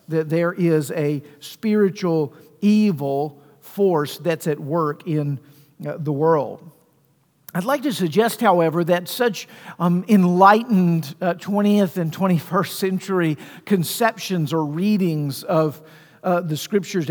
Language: English